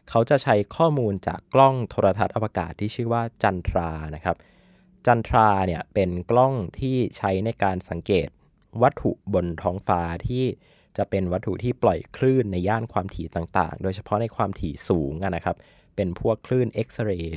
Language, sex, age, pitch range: Thai, male, 20-39, 90-115 Hz